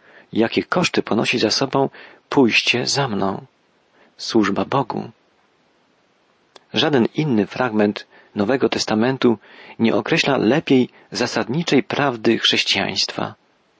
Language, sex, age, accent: Polish, male, 40-59, native